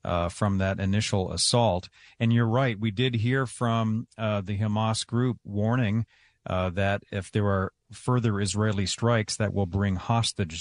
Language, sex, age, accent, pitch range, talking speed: English, male, 40-59, American, 105-120 Hz, 165 wpm